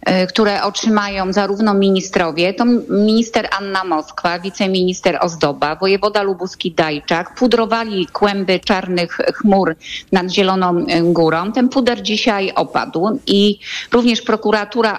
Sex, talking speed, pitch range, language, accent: female, 105 wpm, 185-225 Hz, Polish, native